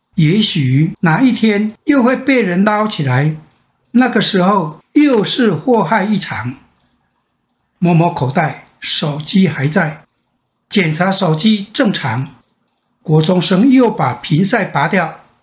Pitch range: 150-240 Hz